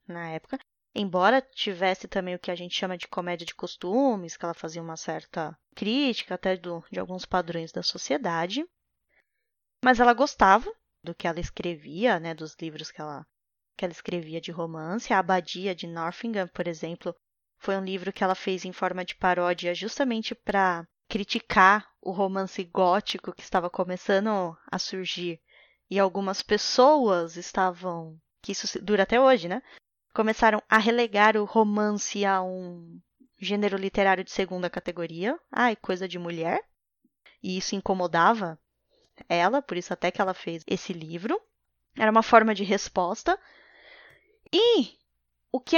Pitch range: 175-220 Hz